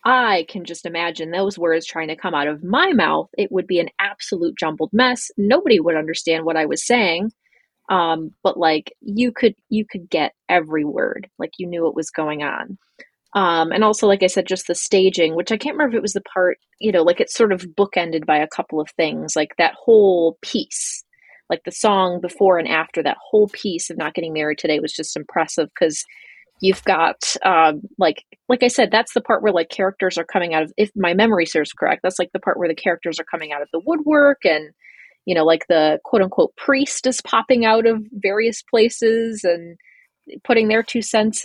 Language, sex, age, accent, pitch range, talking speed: English, female, 30-49, American, 165-220 Hz, 215 wpm